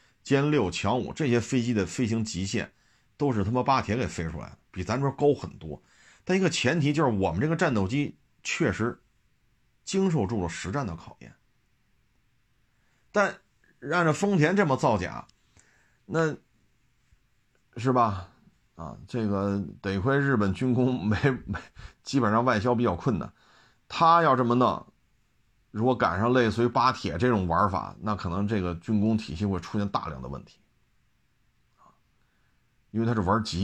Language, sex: Chinese, male